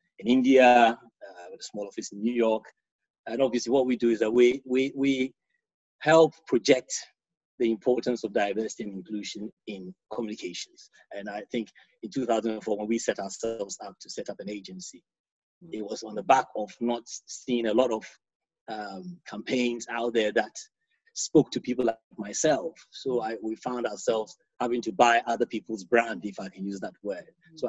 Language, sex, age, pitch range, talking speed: English, male, 30-49, 110-125 Hz, 180 wpm